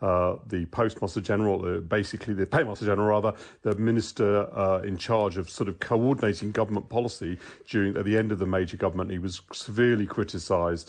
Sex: male